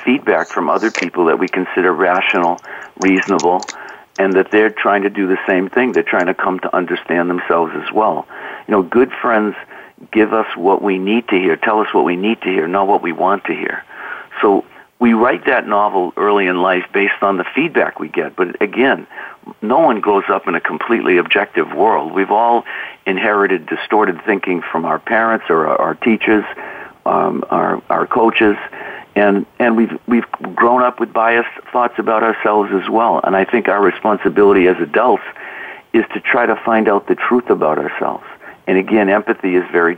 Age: 60-79